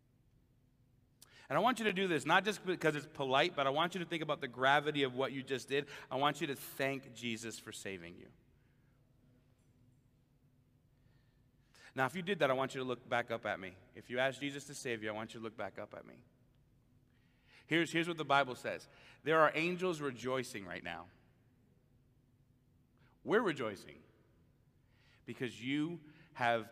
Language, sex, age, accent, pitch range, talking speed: English, male, 30-49, American, 115-135 Hz, 185 wpm